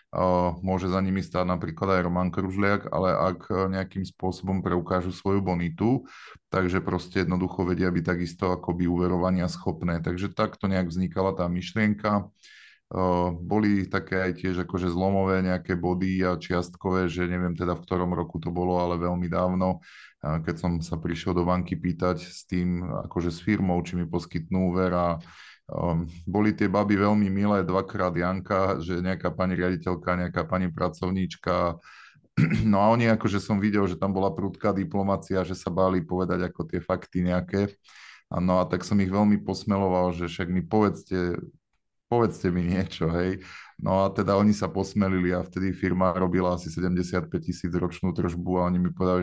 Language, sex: Slovak, male